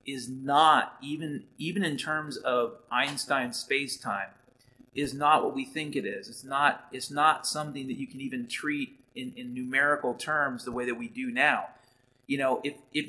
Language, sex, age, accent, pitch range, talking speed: English, male, 30-49, American, 130-165 Hz, 190 wpm